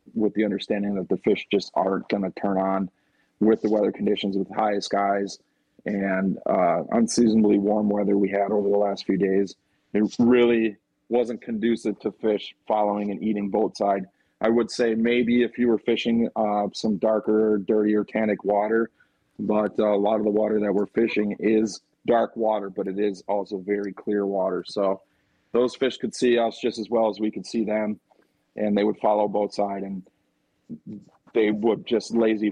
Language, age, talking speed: English, 40-59, 185 wpm